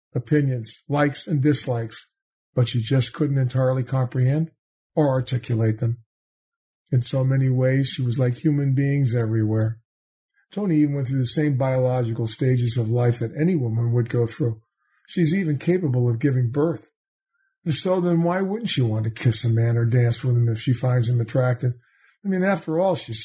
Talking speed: 180 wpm